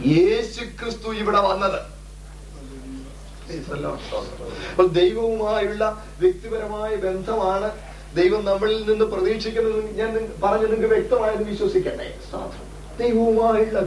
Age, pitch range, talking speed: 30-49, 155-210 Hz, 70 wpm